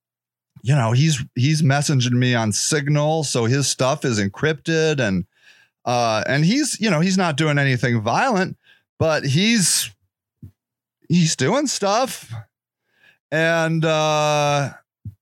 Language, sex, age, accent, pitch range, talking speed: English, male, 30-49, American, 135-195 Hz, 120 wpm